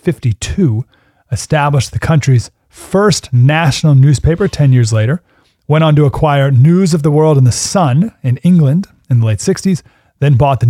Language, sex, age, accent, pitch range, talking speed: English, male, 30-49, American, 110-150 Hz, 170 wpm